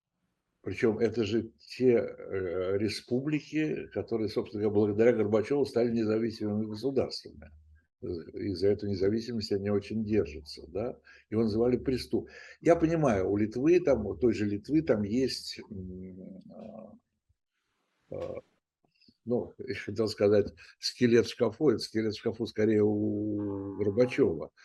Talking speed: 120 wpm